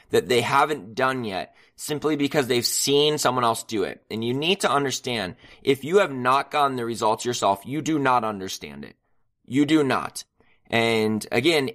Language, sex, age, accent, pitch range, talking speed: English, male, 20-39, American, 115-145 Hz, 185 wpm